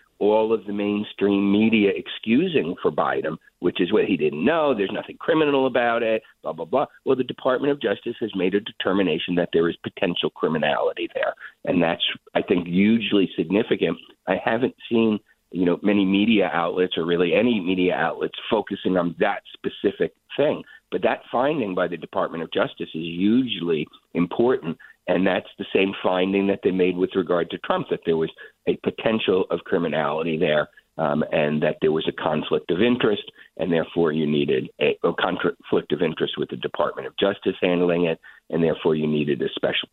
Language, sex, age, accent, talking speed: English, male, 50-69, American, 185 wpm